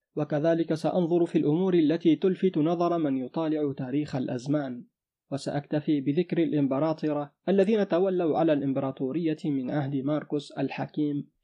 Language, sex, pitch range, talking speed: Arabic, male, 145-165 Hz, 115 wpm